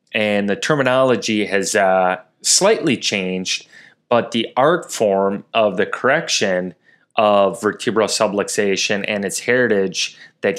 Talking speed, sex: 120 wpm, male